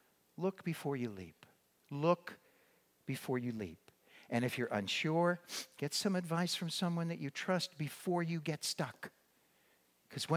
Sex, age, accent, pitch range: male, 60-79, American, 110-155 Hz